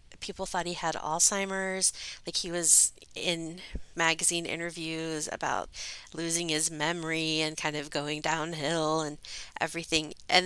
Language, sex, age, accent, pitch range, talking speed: English, female, 30-49, American, 155-190 Hz, 130 wpm